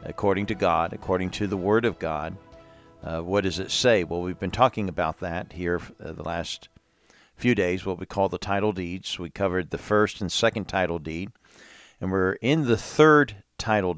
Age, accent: 50-69, American